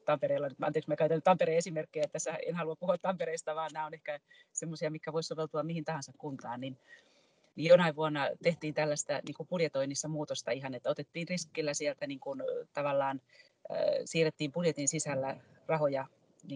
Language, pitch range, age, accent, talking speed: Finnish, 145-175 Hz, 30-49, native, 145 wpm